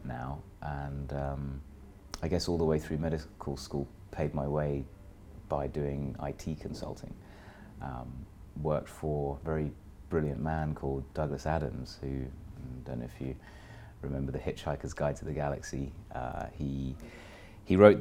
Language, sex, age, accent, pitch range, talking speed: English, male, 30-49, British, 70-90 Hz, 150 wpm